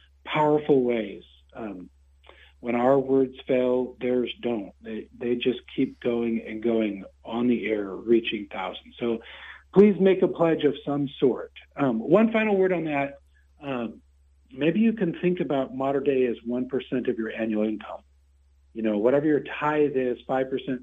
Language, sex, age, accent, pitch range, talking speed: English, male, 50-69, American, 110-140 Hz, 165 wpm